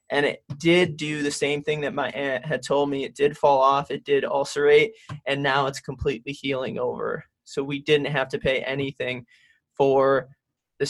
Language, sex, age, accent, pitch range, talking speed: English, male, 20-39, American, 140-165 Hz, 195 wpm